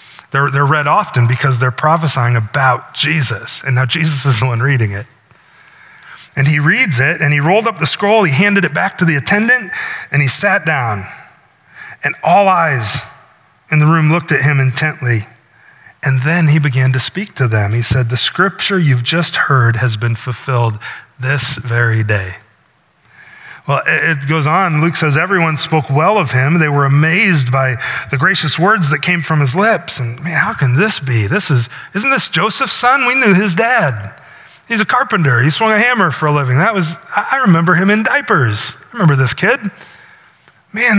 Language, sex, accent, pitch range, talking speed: English, male, American, 130-180 Hz, 190 wpm